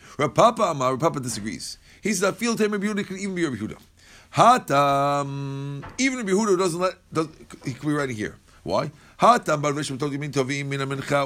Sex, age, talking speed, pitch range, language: male, 50-69, 195 wpm, 115-190 Hz, English